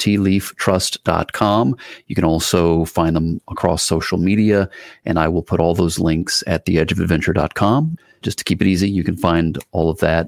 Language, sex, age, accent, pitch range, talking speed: English, male, 40-59, American, 85-100 Hz, 170 wpm